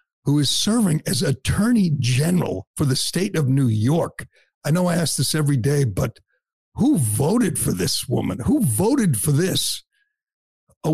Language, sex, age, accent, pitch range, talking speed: English, male, 50-69, American, 140-185 Hz, 165 wpm